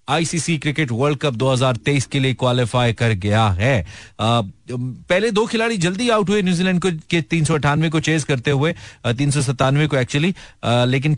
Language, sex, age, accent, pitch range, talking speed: Hindi, male, 40-59, native, 125-160 Hz, 130 wpm